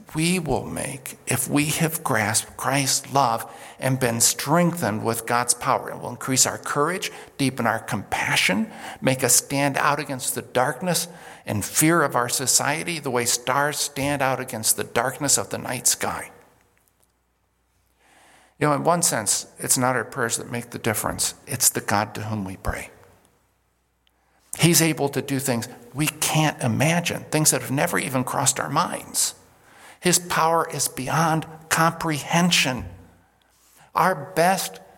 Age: 50-69